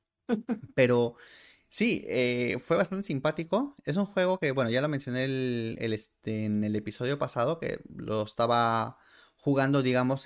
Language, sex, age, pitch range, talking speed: Spanish, male, 20-39, 115-150 Hz, 150 wpm